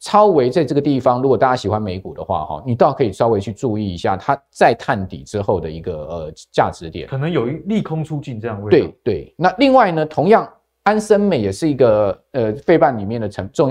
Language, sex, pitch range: Chinese, male, 110-165 Hz